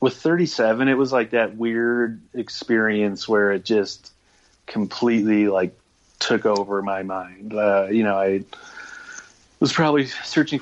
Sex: male